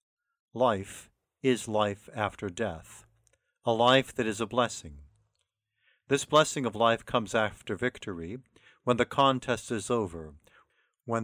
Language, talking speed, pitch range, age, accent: English, 130 wpm, 100-120 Hz, 50-69, American